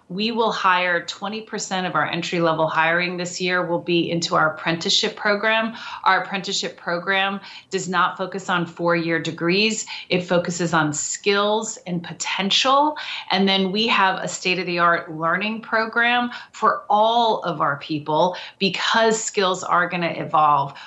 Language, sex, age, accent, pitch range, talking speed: English, female, 30-49, American, 170-210 Hz, 145 wpm